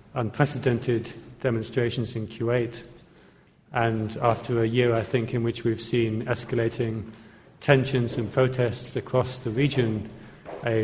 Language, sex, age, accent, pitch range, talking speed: English, male, 40-59, British, 115-130 Hz, 120 wpm